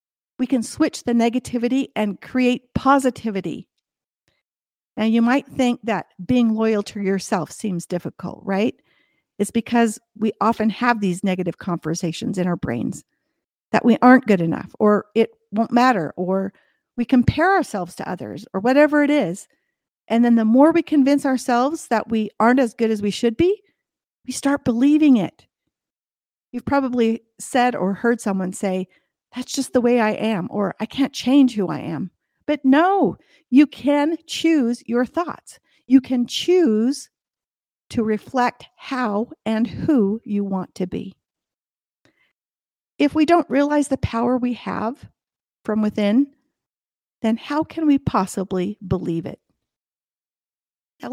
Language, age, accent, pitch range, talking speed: English, 50-69, American, 205-270 Hz, 150 wpm